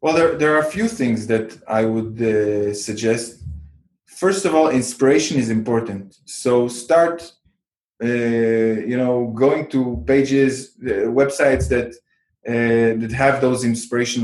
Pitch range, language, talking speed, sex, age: 115-155 Hz, English, 145 wpm, male, 20-39